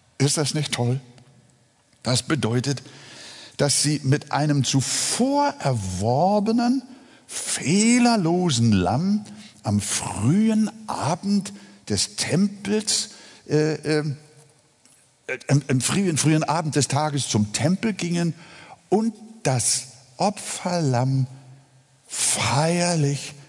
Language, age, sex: German, 60-79, male